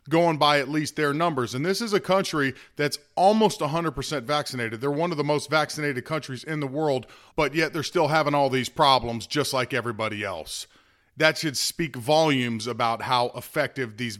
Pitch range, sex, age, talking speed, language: 135-170 Hz, male, 40-59, 190 wpm, English